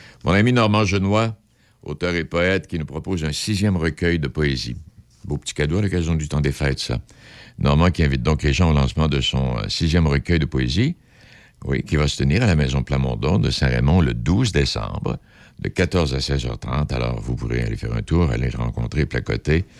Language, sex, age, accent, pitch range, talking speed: French, male, 60-79, French, 70-100 Hz, 205 wpm